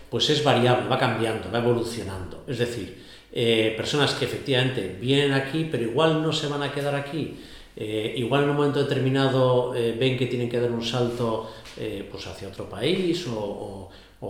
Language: Spanish